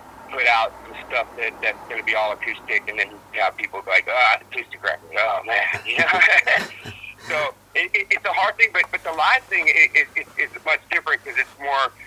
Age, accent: 50-69, American